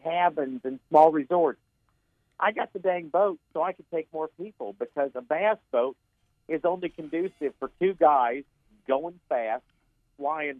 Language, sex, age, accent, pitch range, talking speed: English, male, 50-69, American, 115-155 Hz, 160 wpm